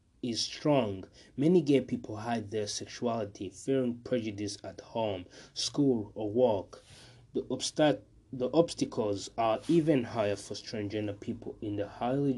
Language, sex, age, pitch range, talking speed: English, male, 20-39, 105-135 Hz, 135 wpm